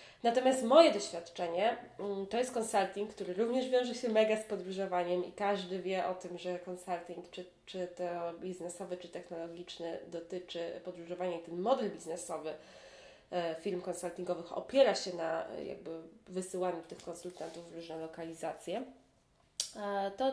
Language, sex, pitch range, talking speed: Polish, female, 175-215 Hz, 135 wpm